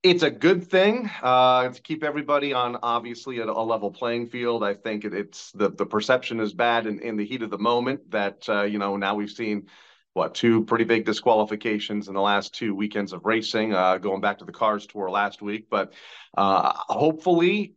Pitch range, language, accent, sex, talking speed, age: 105-125 Hz, English, American, male, 210 wpm, 40-59